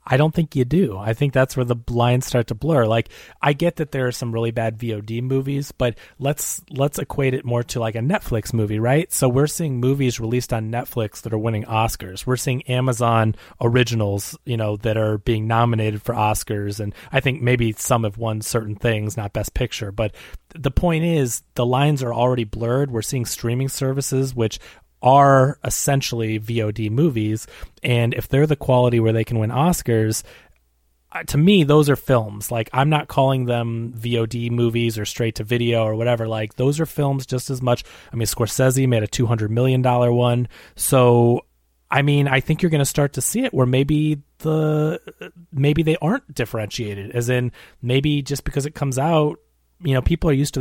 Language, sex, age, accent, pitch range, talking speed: English, male, 30-49, American, 115-140 Hz, 200 wpm